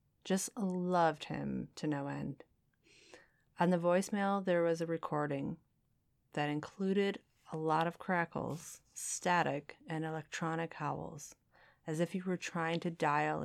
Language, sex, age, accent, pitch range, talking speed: English, female, 30-49, American, 145-170 Hz, 135 wpm